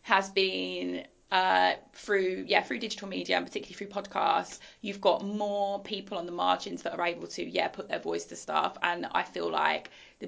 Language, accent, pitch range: English, British, 175-215 Hz